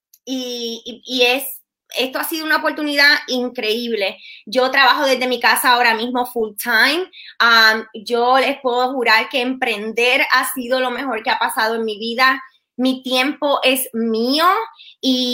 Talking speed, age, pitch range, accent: 155 wpm, 20-39, 230-270 Hz, American